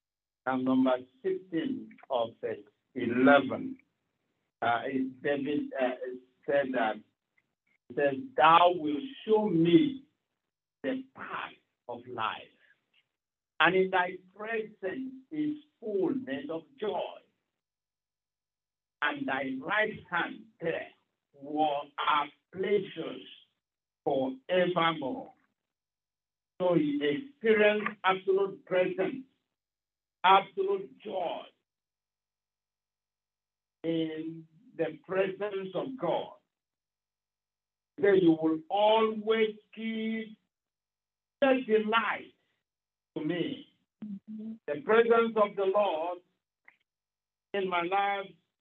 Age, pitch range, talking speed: 50-69, 160-225 Hz, 80 wpm